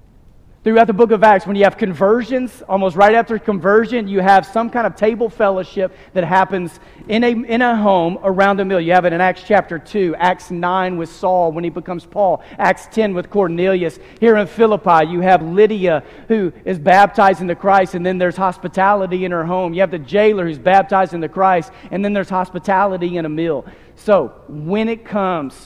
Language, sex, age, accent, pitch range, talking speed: English, male, 40-59, American, 170-205 Hz, 200 wpm